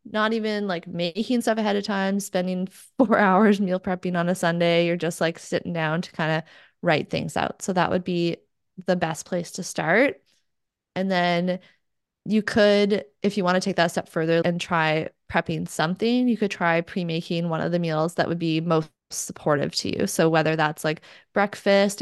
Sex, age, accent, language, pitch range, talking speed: female, 20-39, American, English, 165-205 Hz, 200 wpm